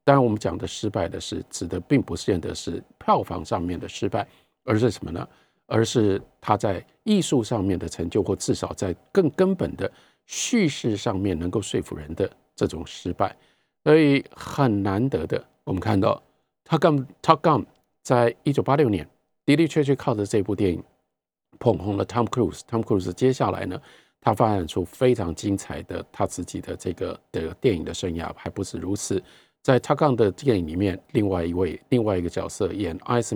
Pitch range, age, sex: 95-150 Hz, 50-69, male